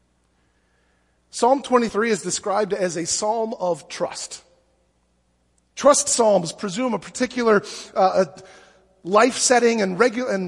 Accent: American